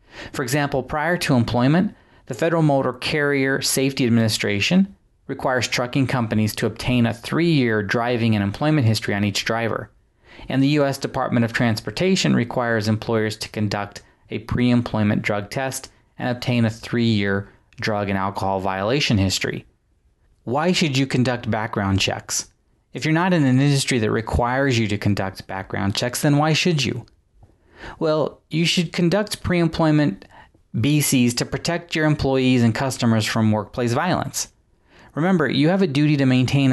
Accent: American